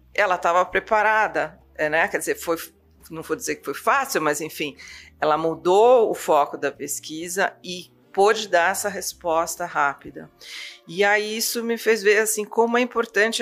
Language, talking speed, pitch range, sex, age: Portuguese, 165 wpm, 155-195 Hz, female, 40-59